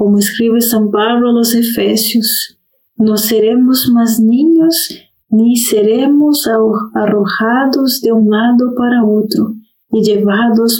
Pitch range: 210-240 Hz